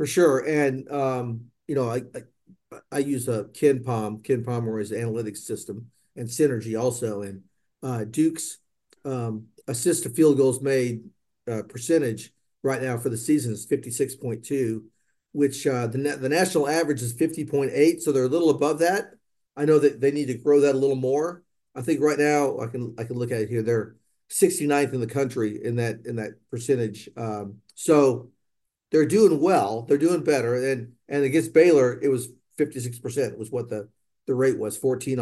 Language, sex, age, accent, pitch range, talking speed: English, male, 50-69, American, 115-140 Hz, 185 wpm